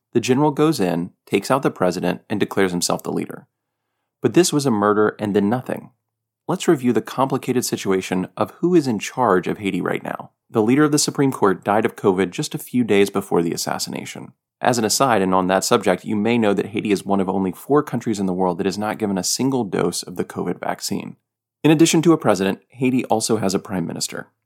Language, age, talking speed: English, 30-49, 230 wpm